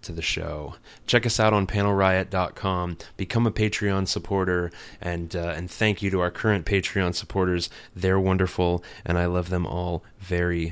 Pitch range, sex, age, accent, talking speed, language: 90-110 Hz, male, 20-39, American, 170 wpm, English